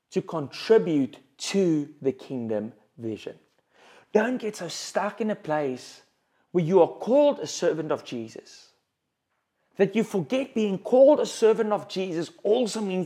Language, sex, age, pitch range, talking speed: English, male, 30-49, 150-225 Hz, 145 wpm